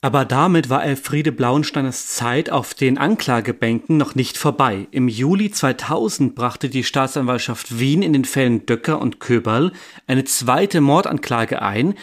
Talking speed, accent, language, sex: 145 wpm, German, German, male